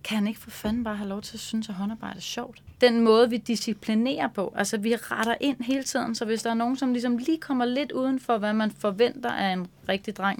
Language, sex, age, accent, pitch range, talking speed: Danish, female, 30-49, native, 195-235 Hz, 260 wpm